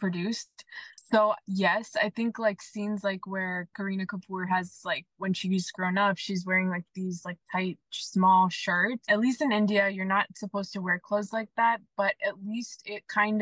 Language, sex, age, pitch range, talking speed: English, female, 20-39, 185-215 Hz, 190 wpm